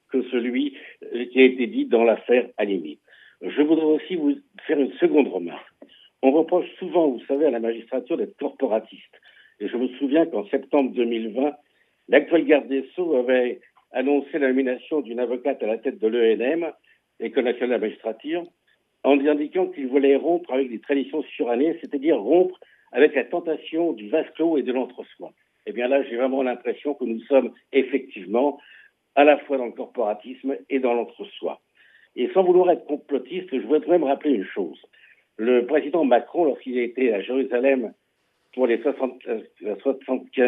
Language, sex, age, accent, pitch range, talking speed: Italian, male, 60-79, French, 125-165 Hz, 165 wpm